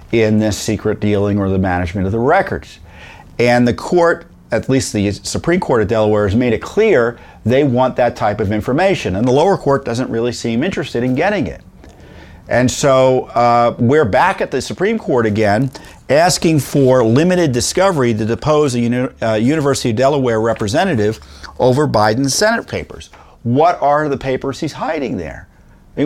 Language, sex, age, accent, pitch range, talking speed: English, male, 50-69, American, 115-175 Hz, 175 wpm